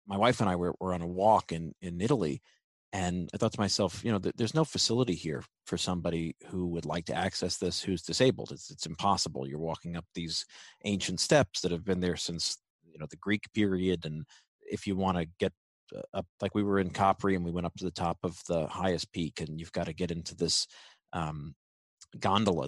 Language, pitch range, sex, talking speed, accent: English, 85-105 Hz, male, 220 wpm, American